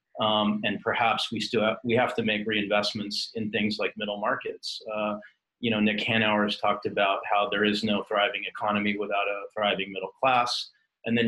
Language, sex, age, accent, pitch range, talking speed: English, male, 40-59, American, 105-115 Hz, 185 wpm